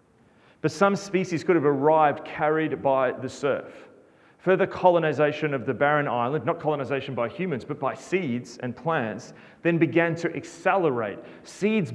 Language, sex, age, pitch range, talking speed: English, male, 30-49, 125-170 Hz, 150 wpm